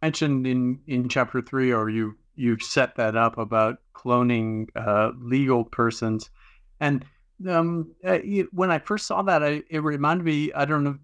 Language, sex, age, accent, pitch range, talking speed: English, male, 50-69, American, 115-140 Hz, 175 wpm